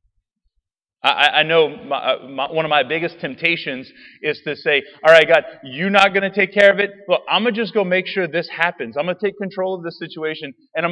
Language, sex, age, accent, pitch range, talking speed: English, male, 30-49, American, 120-190 Hz, 230 wpm